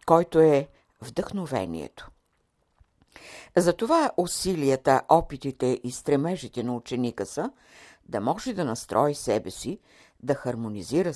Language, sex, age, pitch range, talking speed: Bulgarian, female, 60-79, 125-175 Hz, 100 wpm